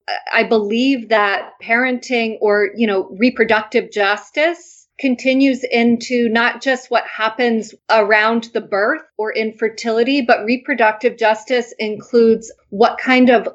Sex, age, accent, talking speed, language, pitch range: female, 30-49, American, 120 wpm, English, 195-230 Hz